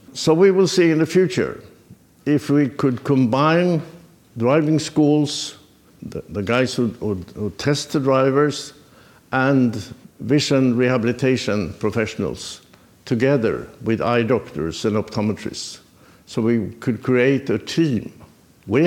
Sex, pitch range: male, 115-145 Hz